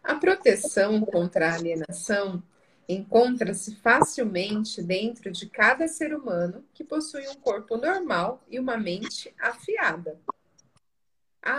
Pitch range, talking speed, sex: 185-250 Hz, 115 wpm, female